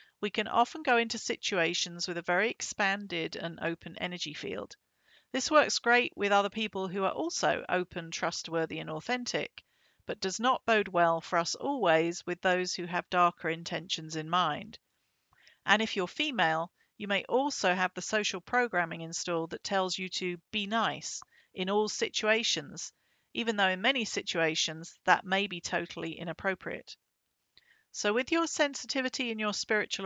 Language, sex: English, female